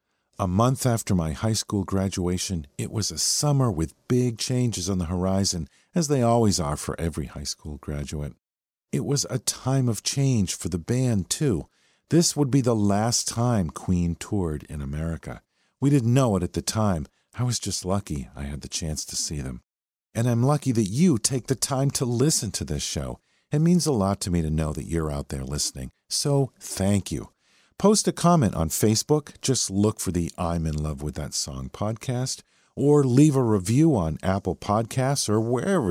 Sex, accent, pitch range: male, American, 85-130 Hz